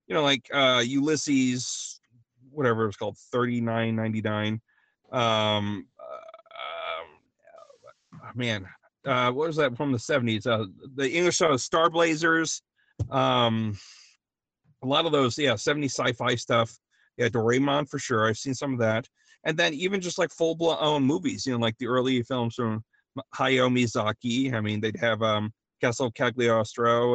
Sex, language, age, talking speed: male, English, 30-49, 150 wpm